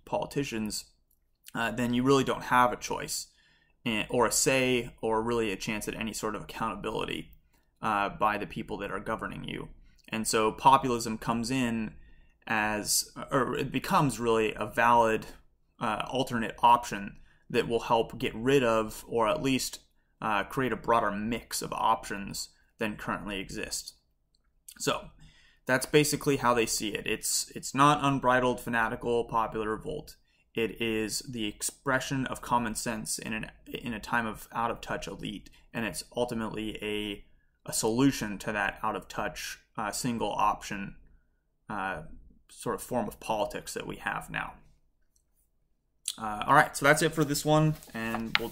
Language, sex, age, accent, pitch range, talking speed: English, male, 20-39, American, 110-130 Hz, 160 wpm